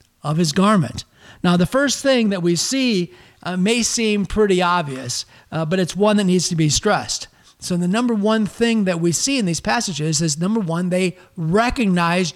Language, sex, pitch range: English, male, 170-215 Hz